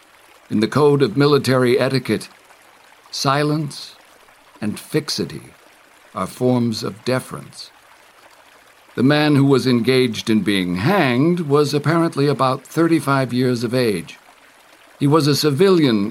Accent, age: American, 60-79